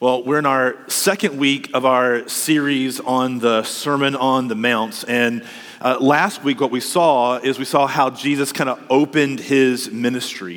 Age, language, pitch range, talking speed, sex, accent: 40-59, English, 140-180 Hz, 180 wpm, male, American